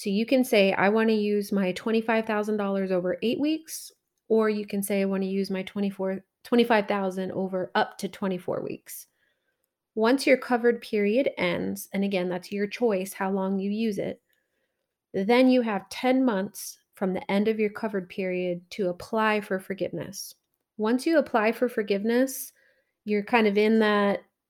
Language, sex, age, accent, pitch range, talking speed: English, female, 30-49, American, 195-230 Hz, 170 wpm